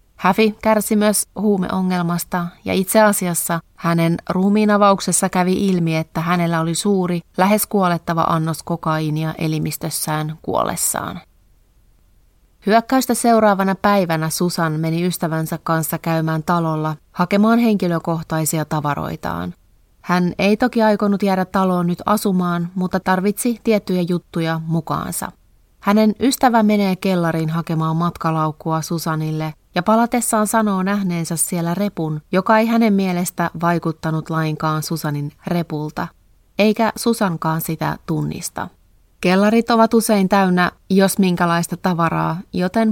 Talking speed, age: 110 wpm, 30-49